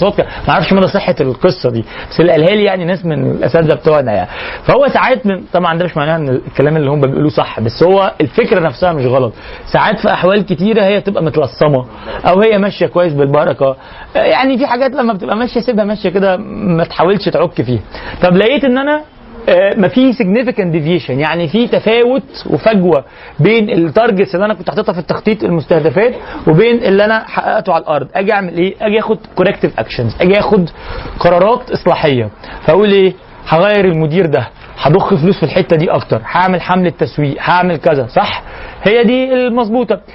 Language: Arabic